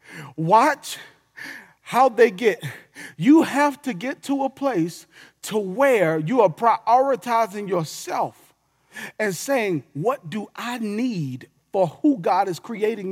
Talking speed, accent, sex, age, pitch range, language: 130 wpm, American, male, 40-59, 180-265 Hz, English